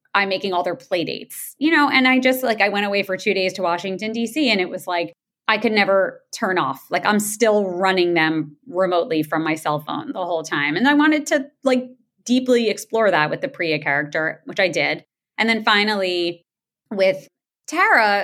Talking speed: 205 wpm